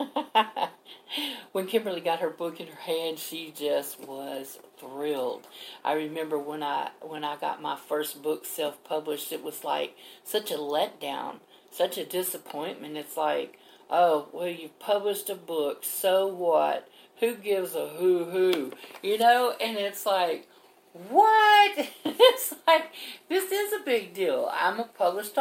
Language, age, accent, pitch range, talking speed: English, 50-69, American, 170-235 Hz, 150 wpm